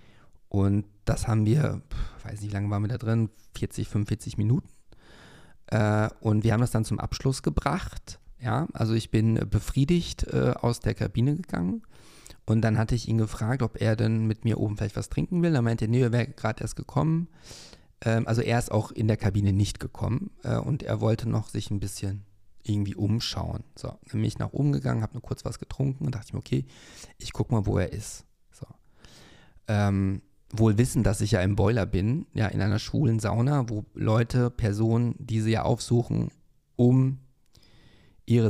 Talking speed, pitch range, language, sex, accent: 200 wpm, 105-125 Hz, German, male, German